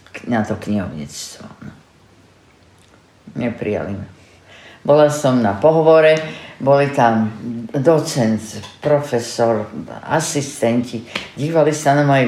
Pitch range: 135-165 Hz